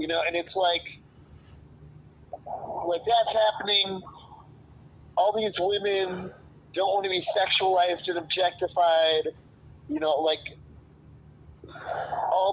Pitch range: 155-215 Hz